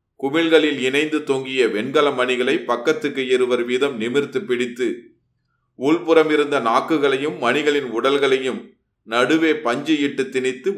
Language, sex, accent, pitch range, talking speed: Tamil, male, native, 120-150 Hz, 105 wpm